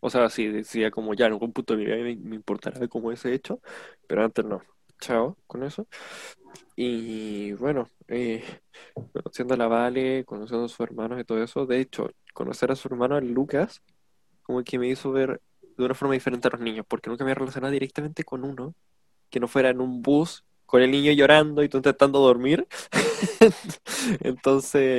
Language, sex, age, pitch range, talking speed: Spanish, male, 10-29, 115-135 Hz, 190 wpm